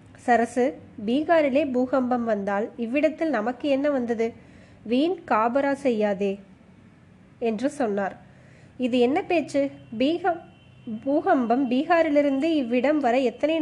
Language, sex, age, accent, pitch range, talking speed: Tamil, female, 20-39, native, 225-285 Hz, 70 wpm